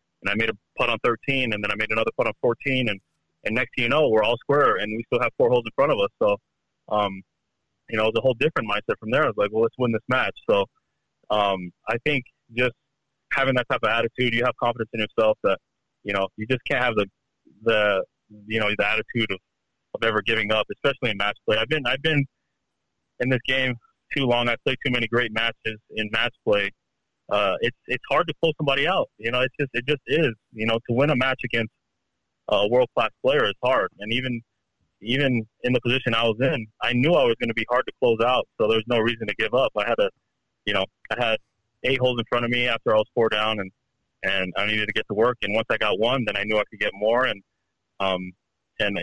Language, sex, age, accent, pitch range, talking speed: English, male, 30-49, American, 105-130 Hz, 250 wpm